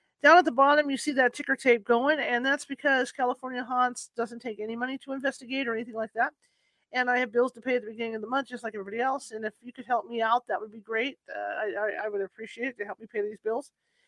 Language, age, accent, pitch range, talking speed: English, 40-59, American, 220-270 Hz, 275 wpm